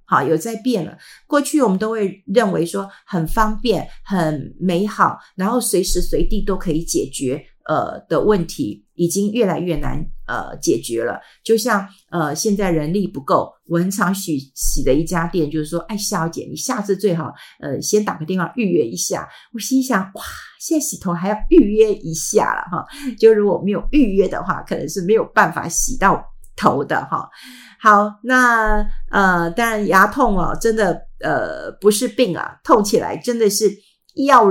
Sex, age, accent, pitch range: female, 50-69, native, 165-210 Hz